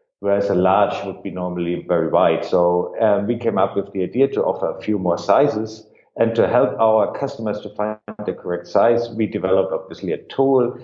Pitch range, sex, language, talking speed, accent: 95-150 Hz, male, English, 205 wpm, German